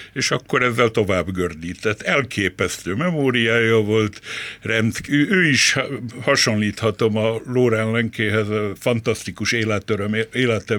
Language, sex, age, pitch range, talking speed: Hungarian, male, 60-79, 105-130 Hz, 105 wpm